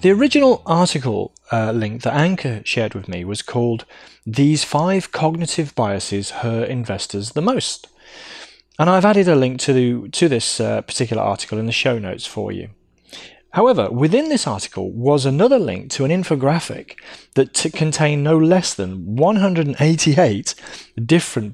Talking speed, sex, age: 155 wpm, male, 30-49